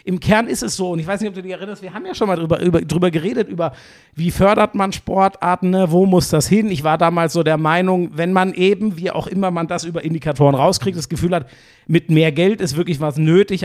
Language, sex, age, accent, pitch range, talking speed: German, male, 50-69, German, 150-190 Hz, 255 wpm